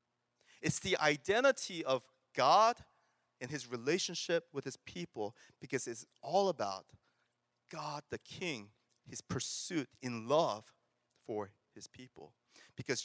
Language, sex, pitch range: English, male, 115-150 Hz